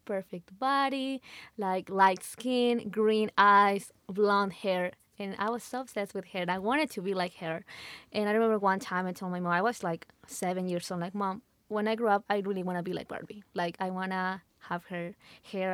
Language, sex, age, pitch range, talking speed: English, female, 20-39, 185-220 Hz, 220 wpm